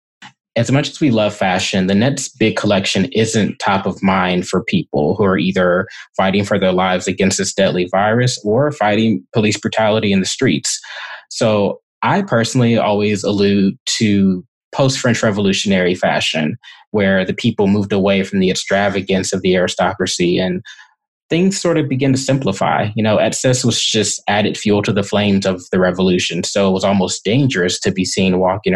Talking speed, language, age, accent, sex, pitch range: 175 wpm, English, 20-39, American, male, 95-115 Hz